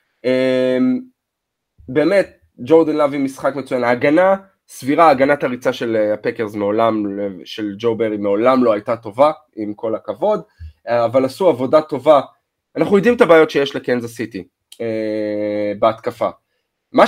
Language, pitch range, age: Hebrew, 120-175 Hz, 20-39